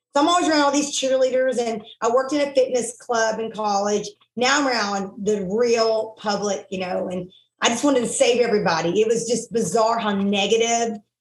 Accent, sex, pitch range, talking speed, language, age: American, female, 200-245 Hz, 200 wpm, English, 30-49